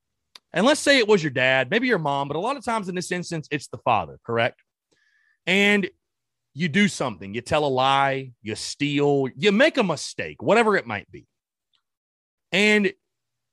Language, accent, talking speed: English, American, 180 wpm